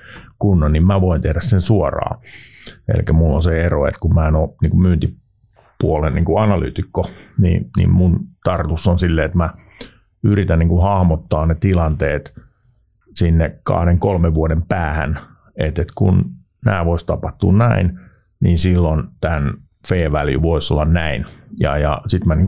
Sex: male